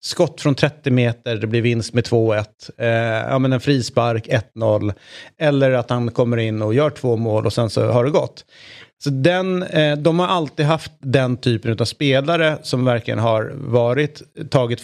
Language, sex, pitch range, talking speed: Swedish, male, 120-145 Hz, 185 wpm